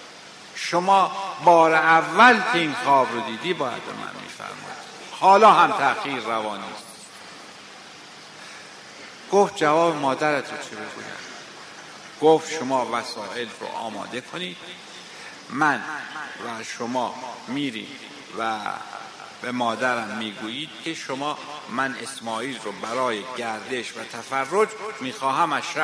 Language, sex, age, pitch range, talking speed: Persian, male, 50-69, 130-160 Hz, 110 wpm